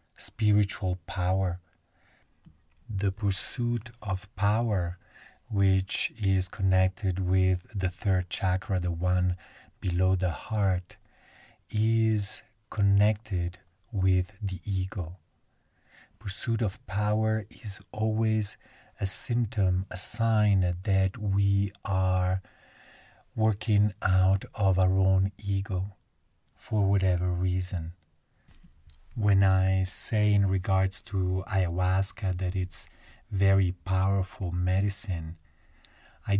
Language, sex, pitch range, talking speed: English, male, 90-105 Hz, 95 wpm